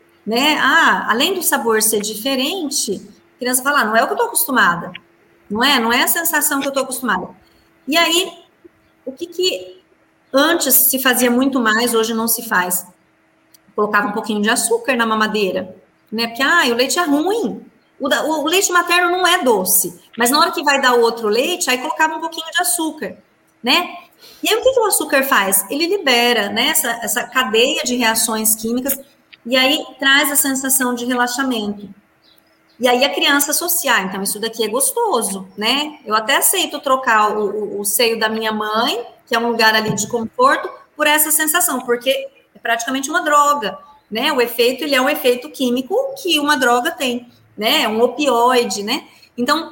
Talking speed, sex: 185 wpm, female